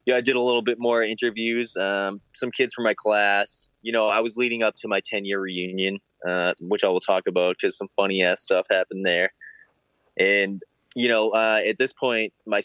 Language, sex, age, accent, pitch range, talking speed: English, male, 20-39, American, 95-115 Hz, 220 wpm